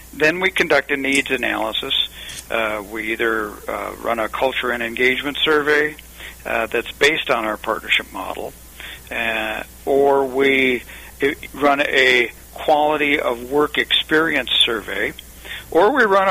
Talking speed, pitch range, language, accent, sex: 135 wpm, 125-150 Hz, English, American, male